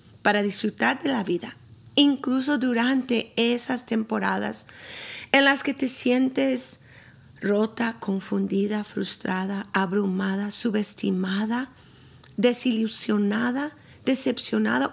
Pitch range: 200-250 Hz